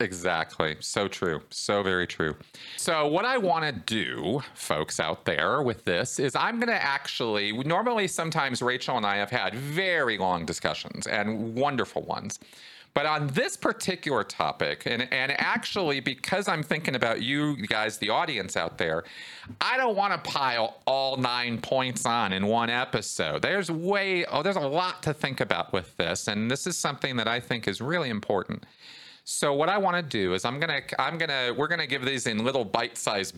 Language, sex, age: English, male, 40-59